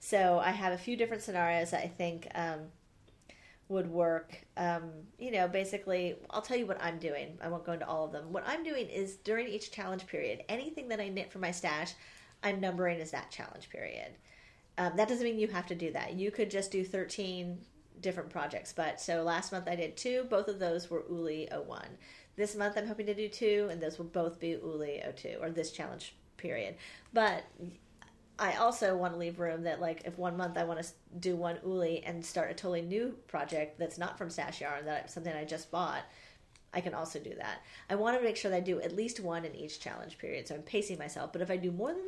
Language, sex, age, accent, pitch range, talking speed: English, female, 40-59, American, 170-210 Hz, 230 wpm